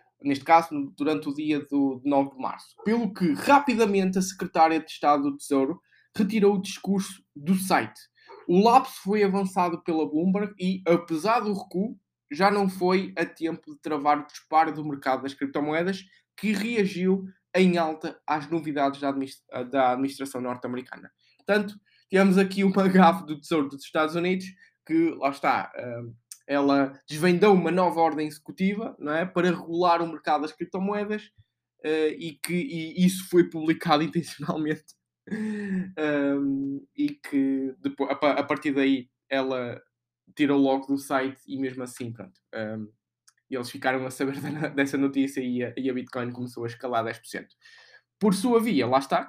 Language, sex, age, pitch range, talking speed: Portuguese, male, 20-39, 135-190 Hz, 150 wpm